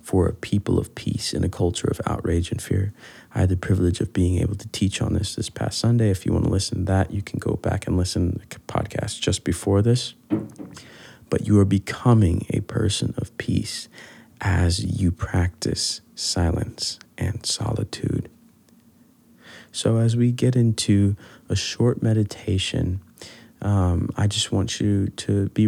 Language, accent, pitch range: English, American, 95-110 Hz